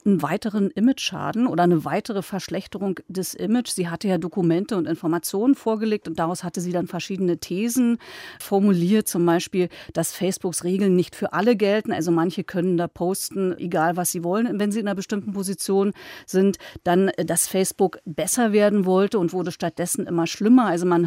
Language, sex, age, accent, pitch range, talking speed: German, female, 40-59, German, 175-210 Hz, 175 wpm